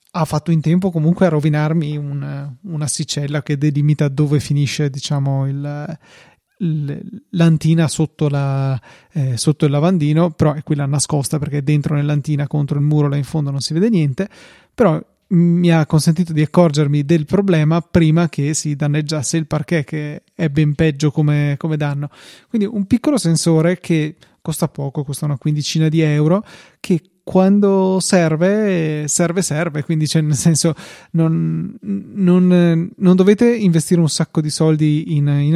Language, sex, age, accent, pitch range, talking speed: Italian, male, 30-49, native, 150-175 Hz, 160 wpm